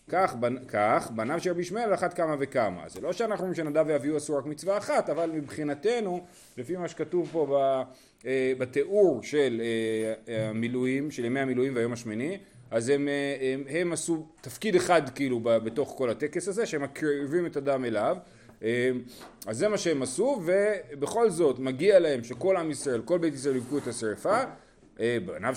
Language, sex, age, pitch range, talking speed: Hebrew, male, 30-49, 130-175 Hz, 170 wpm